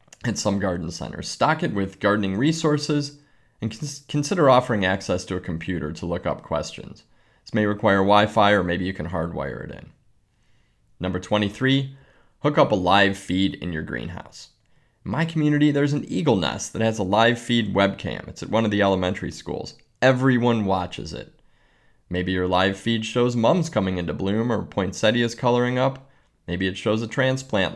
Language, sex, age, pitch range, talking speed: English, male, 20-39, 95-125 Hz, 175 wpm